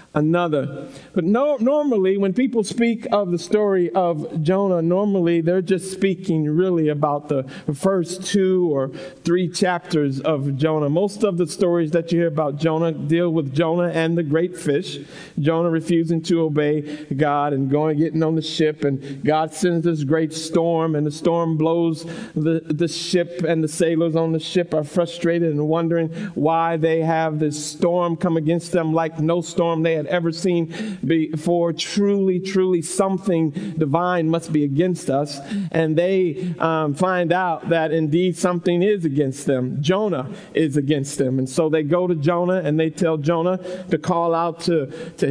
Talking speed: 170 wpm